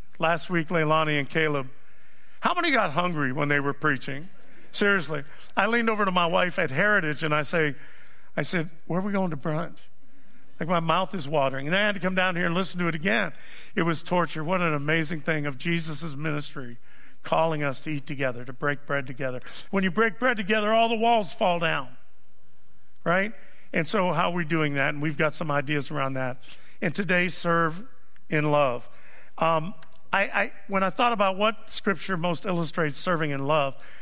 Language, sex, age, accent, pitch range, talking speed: English, male, 50-69, American, 145-185 Hz, 200 wpm